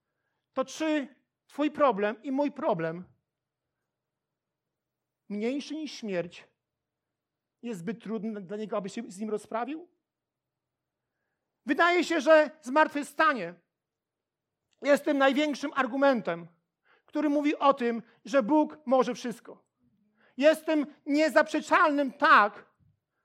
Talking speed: 100 wpm